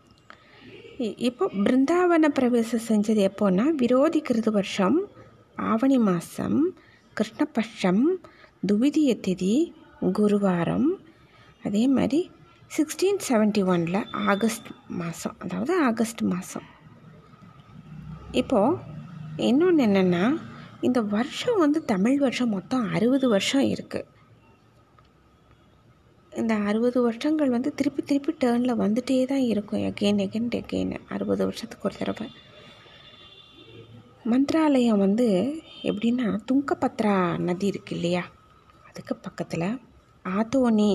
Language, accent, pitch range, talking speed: Tamil, native, 185-275 Hz, 90 wpm